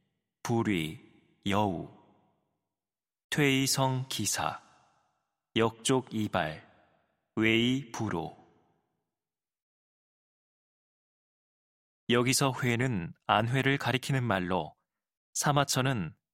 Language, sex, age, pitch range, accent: Korean, male, 20-39, 105-130 Hz, native